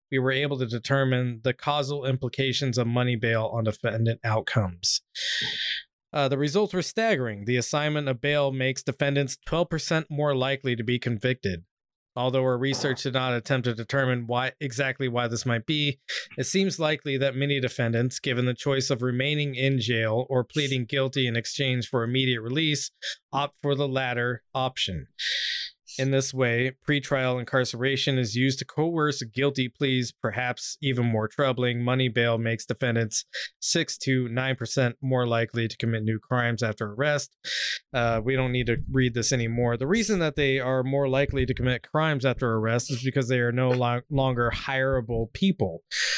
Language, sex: English, male